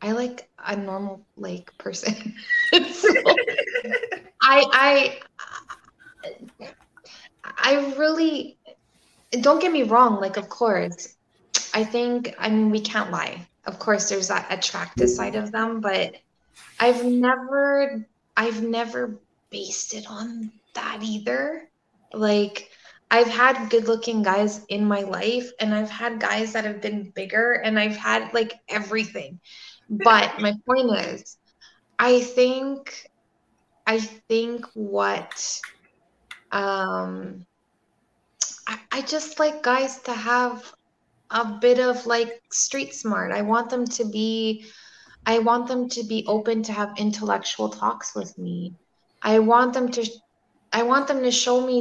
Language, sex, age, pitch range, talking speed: English, female, 20-39, 210-250 Hz, 130 wpm